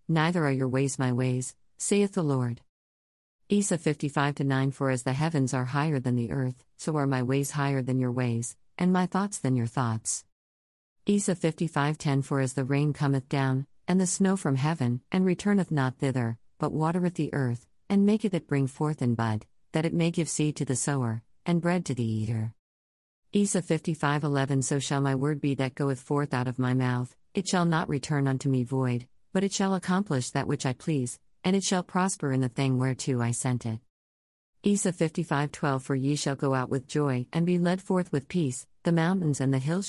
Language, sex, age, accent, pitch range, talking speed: English, female, 50-69, American, 125-160 Hz, 205 wpm